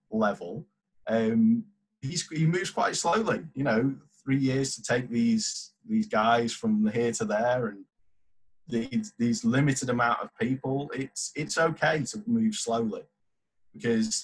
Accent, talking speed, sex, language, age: British, 145 wpm, male, English, 30-49